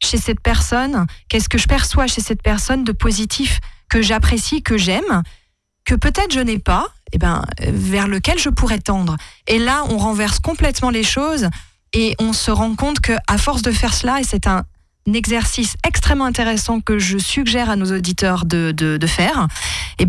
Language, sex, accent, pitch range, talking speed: French, female, French, 180-230 Hz, 190 wpm